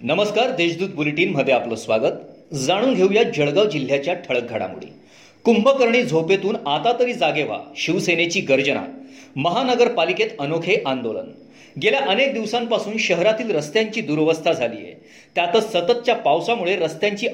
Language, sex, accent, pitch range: Marathi, male, native, 170-230 Hz